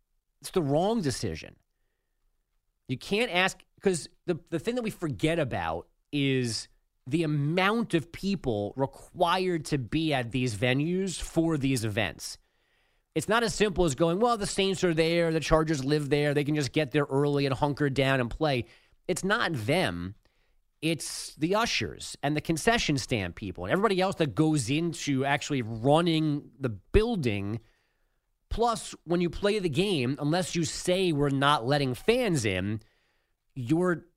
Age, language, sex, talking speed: 30-49, English, male, 160 wpm